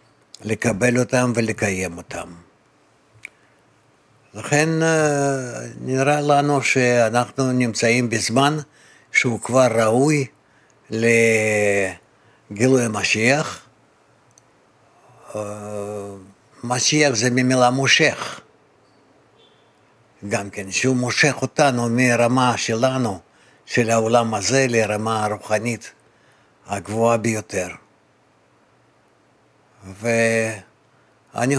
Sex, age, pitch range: male, 60-79, 105-125 Hz